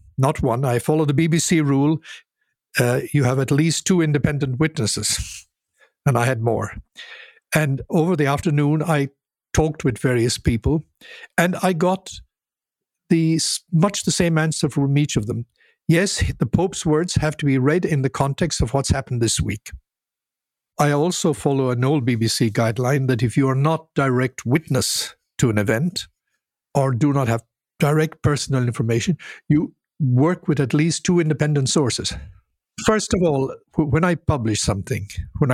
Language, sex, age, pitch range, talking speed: English, male, 60-79, 120-155 Hz, 160 wpm